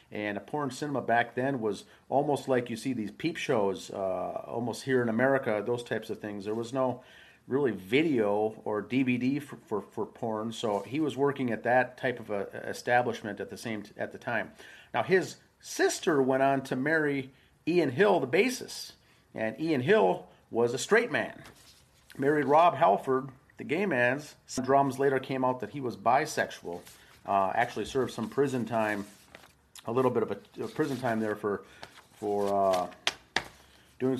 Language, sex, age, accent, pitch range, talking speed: English, male, 40-59, American, 110-135 Hz, 180 wpm